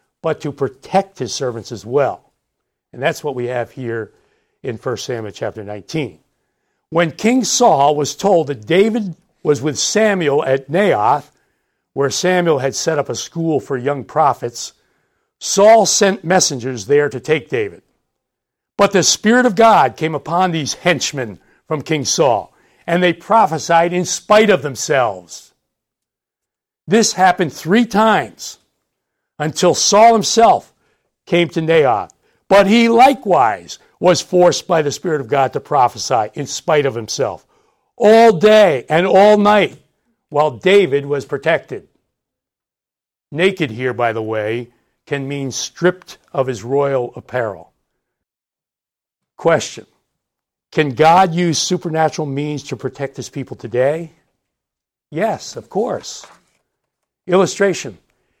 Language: English